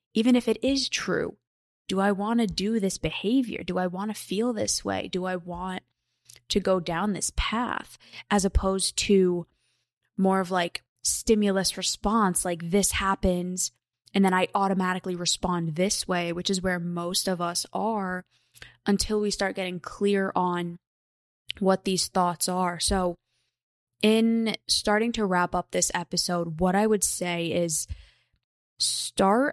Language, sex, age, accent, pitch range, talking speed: English, female, 20-39, American, 175-200 Hz, 155 wpm